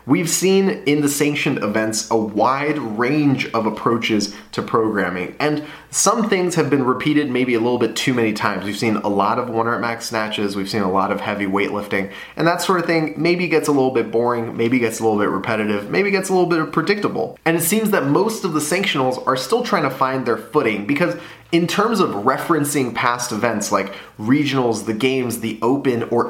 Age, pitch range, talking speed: 20-39, 110-150 Hz, 210 wpm